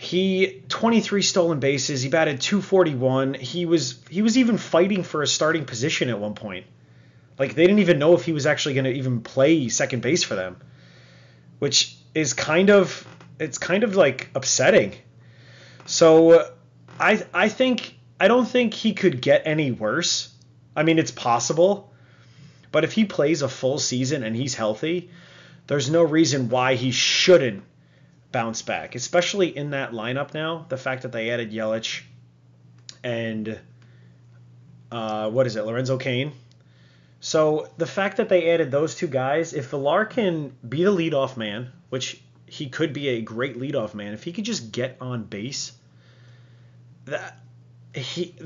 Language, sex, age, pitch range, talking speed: English, male, 30-49, 120-170 Hz, 160 wpm